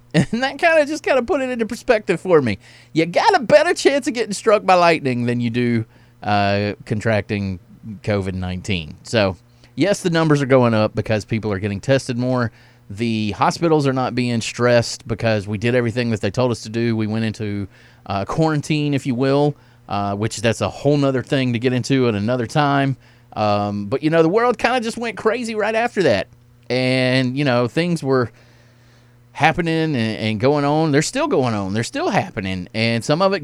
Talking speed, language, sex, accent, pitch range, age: 205 wpm, English, male, American, 110-150 Hz, 30-49